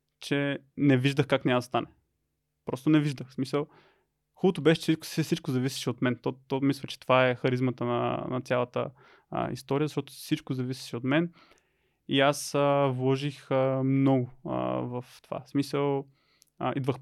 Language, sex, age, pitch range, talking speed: Bulgarian, male, 20-39, 130-145 Hz, 170 wpm